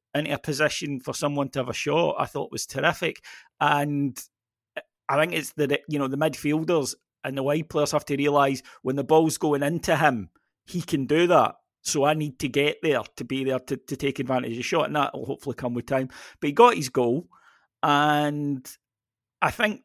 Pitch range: 130-150 Hz